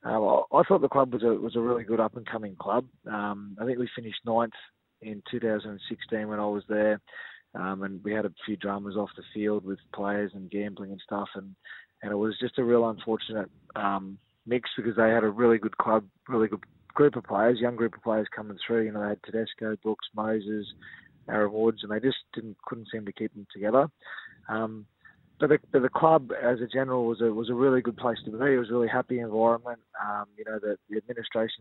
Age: 20-39